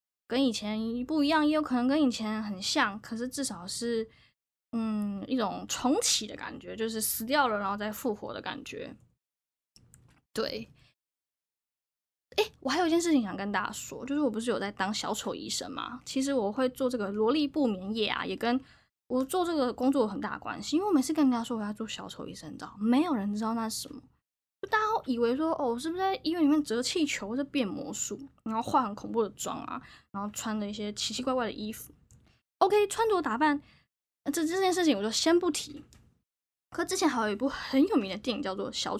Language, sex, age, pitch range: Chinese, female, 10-29, 220-295 Hz